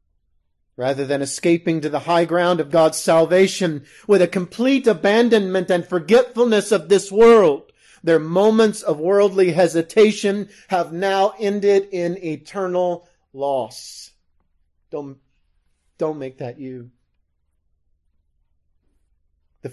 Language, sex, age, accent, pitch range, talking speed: English, male, 40-59, American, 110-155 Hz, 110 wpm